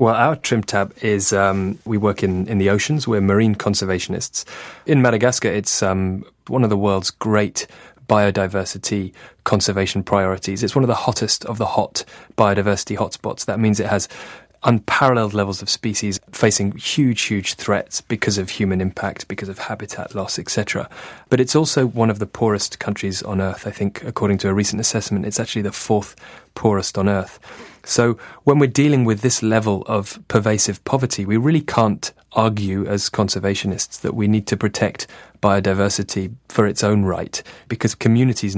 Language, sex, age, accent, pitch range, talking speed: English, male, 30-49, British, 100-115 Hz, 170 wpm